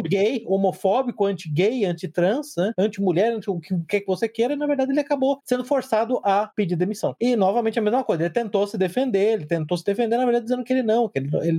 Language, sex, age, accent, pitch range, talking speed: Portuguese, male, 20-39, Brazilian, 150-205 Hz, 210 wpm